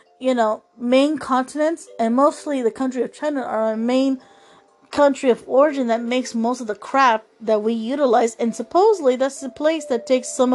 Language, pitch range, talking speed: English, 230-300 Hz, 190 wpm